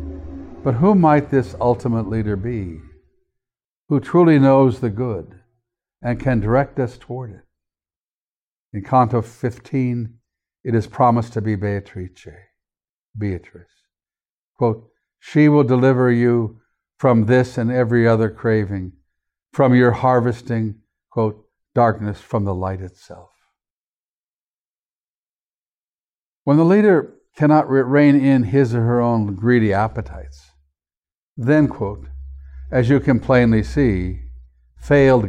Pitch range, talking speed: 100-130 Hz, 115 wpm